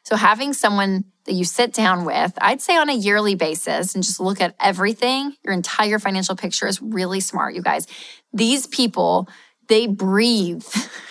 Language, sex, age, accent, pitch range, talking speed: English, female, 20-39, American, 185-225 Hz, 175 wpm